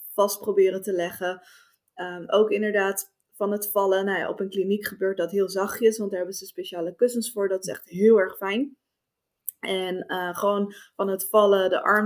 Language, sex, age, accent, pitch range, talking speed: Dutch, female, 20-39, Dutch, 185-205 Hz, 200 wpm